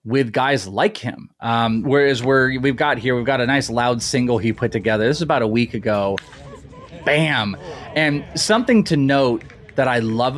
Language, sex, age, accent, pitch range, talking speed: English, male, 20-39, American, 120-155 Hz, 195 wpm